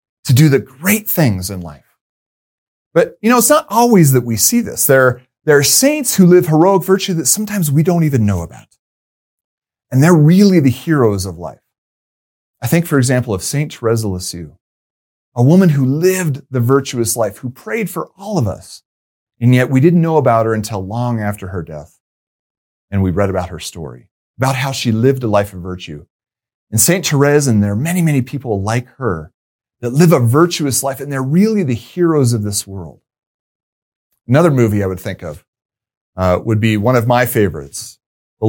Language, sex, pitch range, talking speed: English, male, 105-165 Hz, 195 wpm